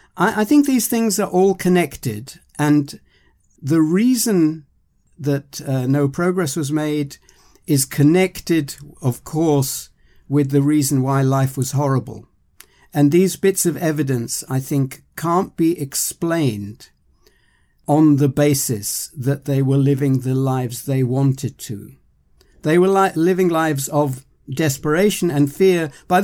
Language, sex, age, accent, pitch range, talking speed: English, male, 60-79, British, 130-170 Hz, 135 wpm